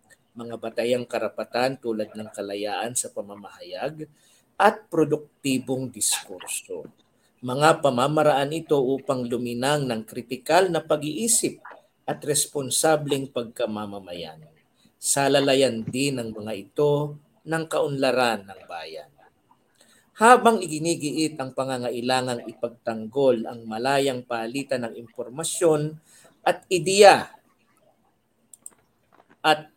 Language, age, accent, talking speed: English, 50-69, Filipino, 90 wpm